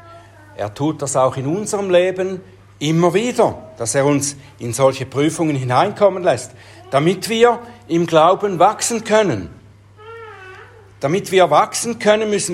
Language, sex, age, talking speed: German, male, 60-79, 135 wpm